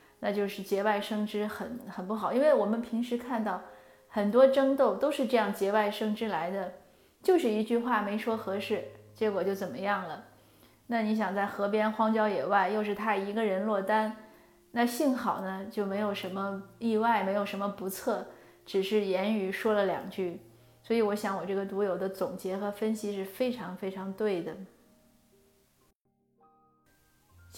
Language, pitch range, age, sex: Chinese, 195-245 Hz, 20-39, female